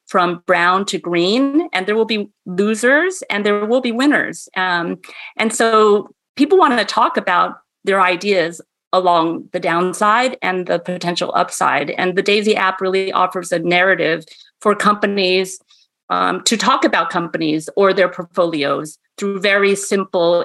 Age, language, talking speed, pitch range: 40-59, English, 155 wpm, 180-210 Hz